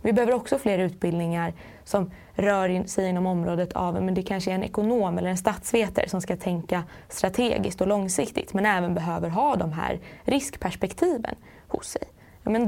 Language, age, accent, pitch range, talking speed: Swedish, 20-39, native, 180-220 Hz, 175 wpm